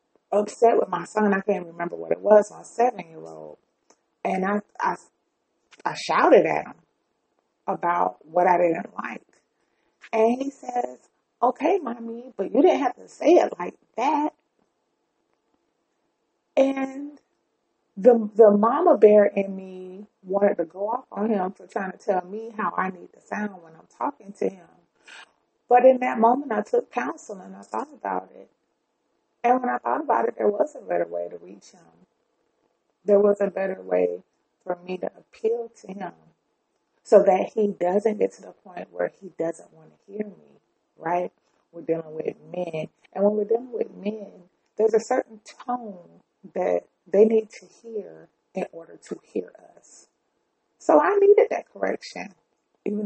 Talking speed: 170 wpm